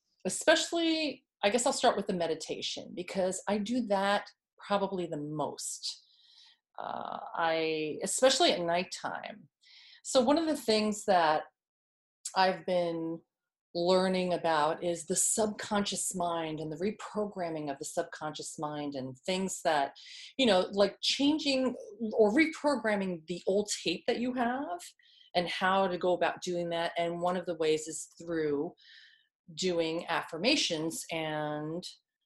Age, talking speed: 30-49, 135 wpm